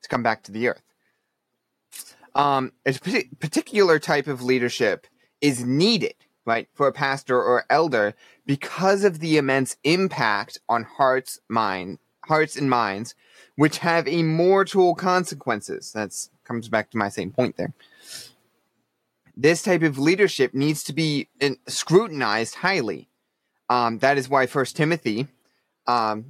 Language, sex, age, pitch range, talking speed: English, male, 20-39, 120-160 Hz, 135 wpm